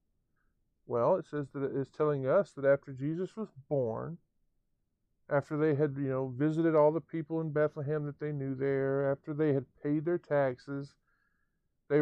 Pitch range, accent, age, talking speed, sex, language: 130-165 Hz, American, 50-69, 175 wpm, male, English